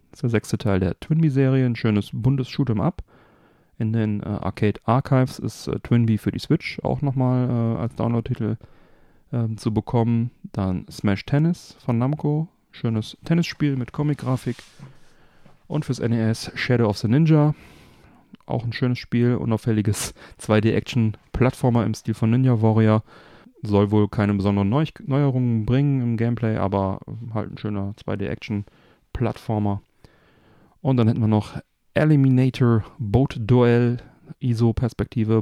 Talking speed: 130 wpm